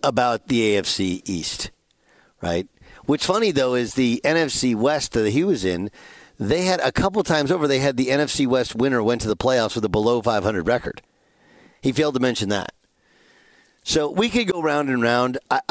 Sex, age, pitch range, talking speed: male, 50-69, 115-145 Hz, 190 wpm